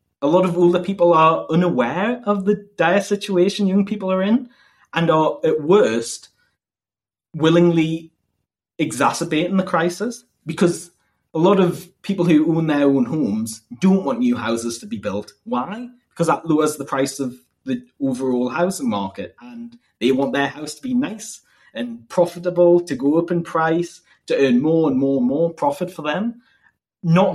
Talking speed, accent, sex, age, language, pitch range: 170 wpm, British, male, 20-39, English, 135-190 Hz